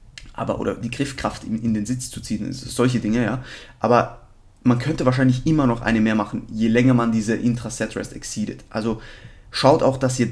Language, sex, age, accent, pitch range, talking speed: German, male, 20-39, German, 110-120 Hz, 185 wpm